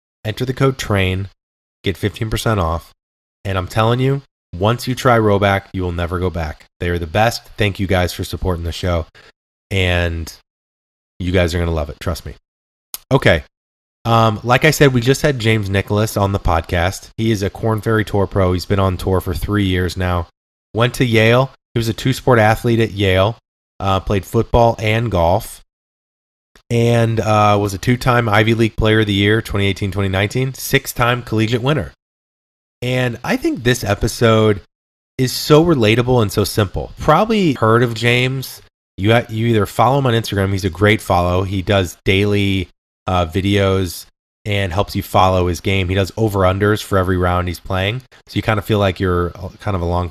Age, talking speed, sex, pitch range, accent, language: 20-39, 185 wpm, male, 90-115 Hz, American, English